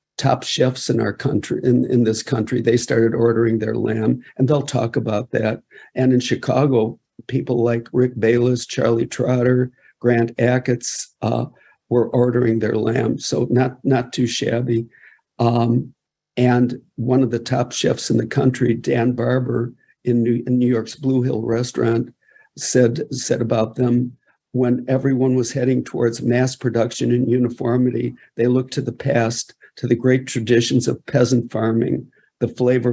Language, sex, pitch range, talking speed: English, male, 115-130 Hz, 160 wpm